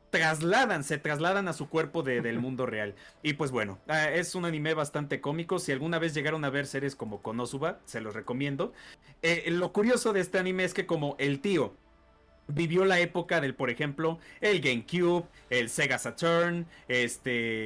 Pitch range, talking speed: 145-200 Hz, 180 wpm